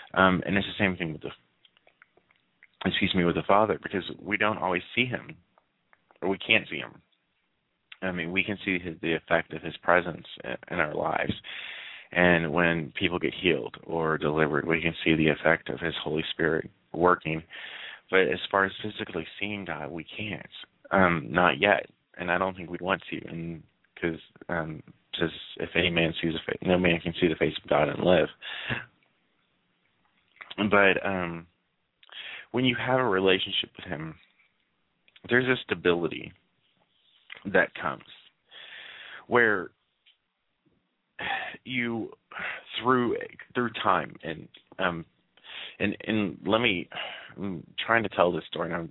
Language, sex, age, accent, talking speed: English, male, 30-49, American, 155 wpm